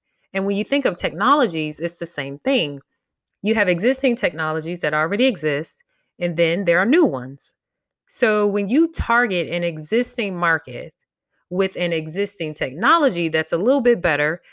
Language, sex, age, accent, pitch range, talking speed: English, female, 20-39, American, 165-225 Hz, 160 wpm